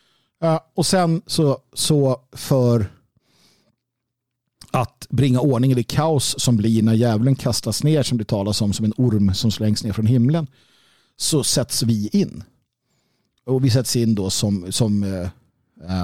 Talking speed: 155 wpm